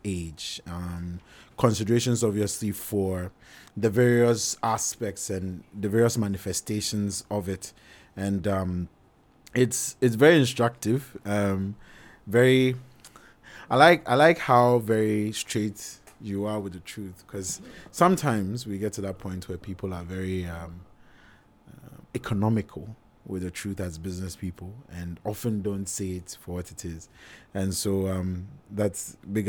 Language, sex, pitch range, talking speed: English, male, 95-115 Hz, 140 wpm